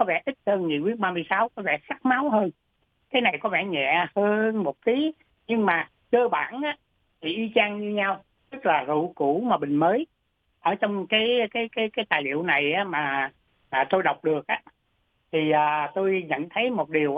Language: Vietnamese